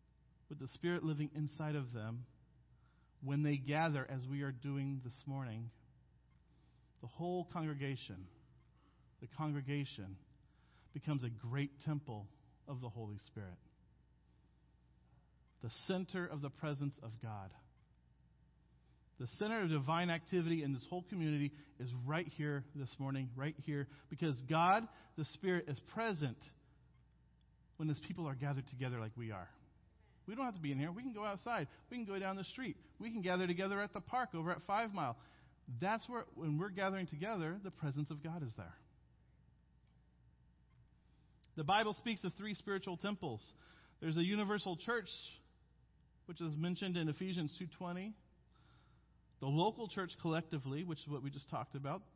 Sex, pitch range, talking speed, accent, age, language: male, 115-175 Hz, 155 wpm, American, 40-59, English